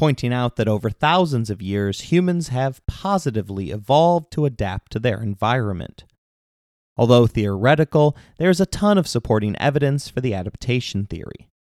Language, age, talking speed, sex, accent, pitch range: English, 30-49, 150 wpm, male, American, 100-140 Hz